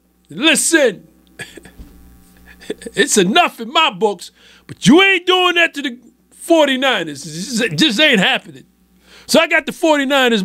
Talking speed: 140 wpm